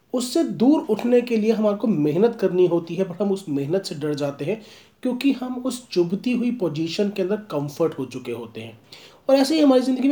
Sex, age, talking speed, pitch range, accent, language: male, 40-59, 220 wpm, 145-220 Hz, native, Hindi